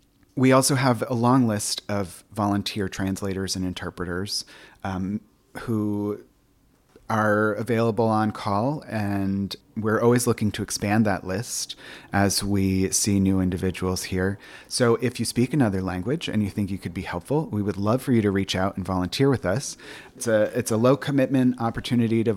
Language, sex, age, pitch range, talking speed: English, male, 30-49, 95-120 Hz, 170 wpm